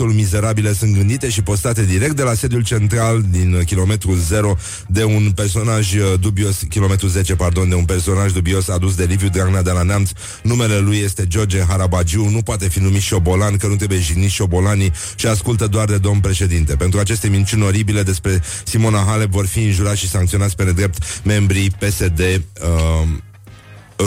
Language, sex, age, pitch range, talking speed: Romanian, male, 30-49, 90-105 Hz, 175 wpm